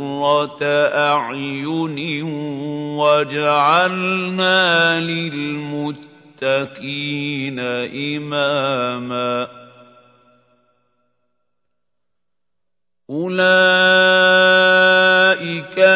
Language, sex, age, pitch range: Arabic, male, 50-69, 125-165 Hz